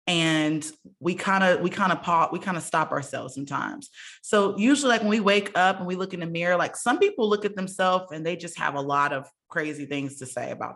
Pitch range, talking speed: 165-205 Hz, 245 wpm